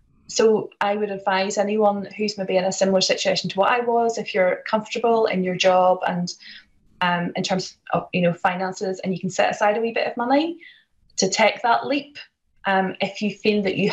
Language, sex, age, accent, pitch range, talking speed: English, female, 20-39, British, 190-235 Hz, 210 wpm